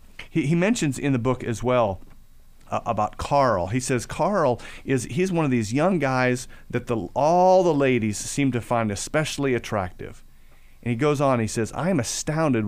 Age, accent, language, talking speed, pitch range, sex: 40-59, American, English, 190 wpm, 100-140 Hz, male